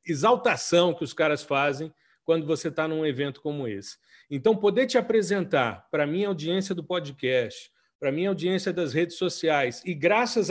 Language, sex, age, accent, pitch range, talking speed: Portuguese, male, 40-59, Brazilian, 145-185 Hz, 175 wpm